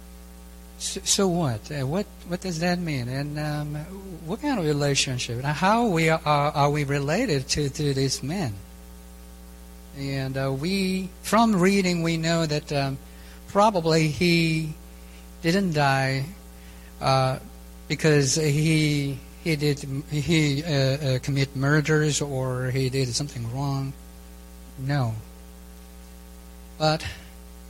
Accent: American